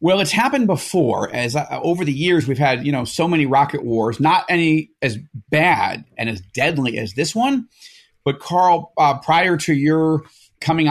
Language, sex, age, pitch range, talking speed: English, male, 30-49, 140-175 Hz, 185 wpm